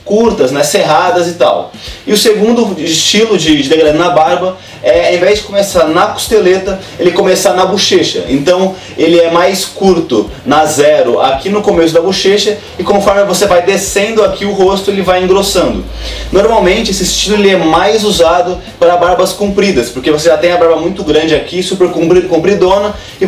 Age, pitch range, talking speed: 20-39, 155-195 Hz, 180 wpm